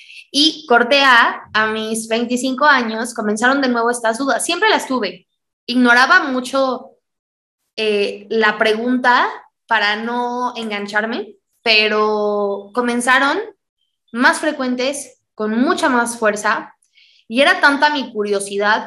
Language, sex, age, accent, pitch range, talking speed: Spanish, female, 20-39, Mexican, 210-250 Hz, 115 wpm